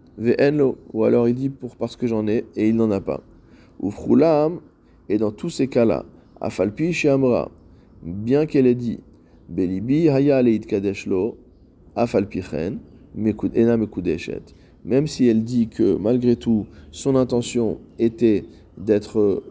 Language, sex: French, male